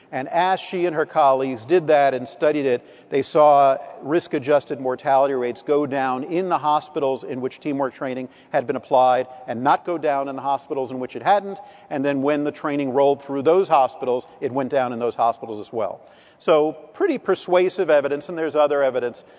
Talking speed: 200 wpm